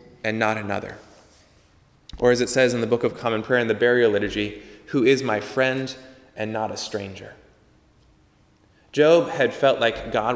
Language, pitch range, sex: English, 110-140 Hz, male